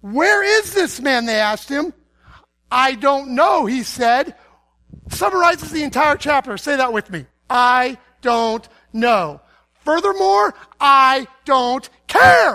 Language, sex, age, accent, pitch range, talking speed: English, male, 40-59, American, 215-300 Hz, 130 wpm